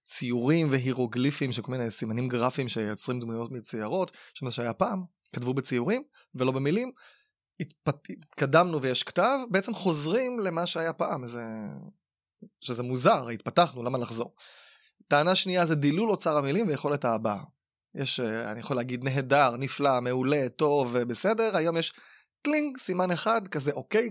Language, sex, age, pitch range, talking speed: Hebrew, male, 20-39, 125-185 Hz, 135 wpm